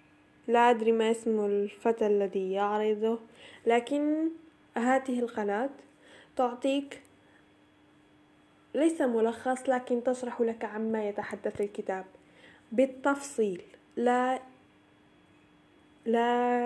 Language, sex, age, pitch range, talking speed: Arabic, female, 10-29, 220-260 Hz, 80 wpm